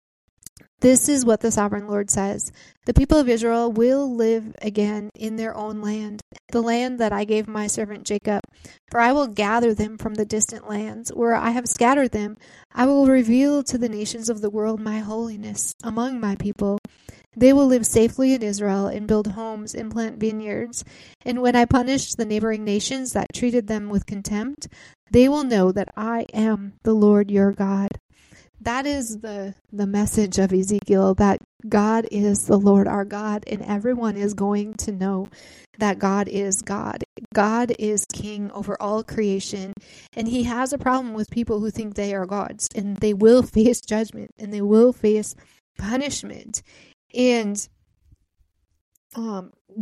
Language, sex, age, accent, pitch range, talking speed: English, female, 20-39, American, 205-235 Hz, 170 wpm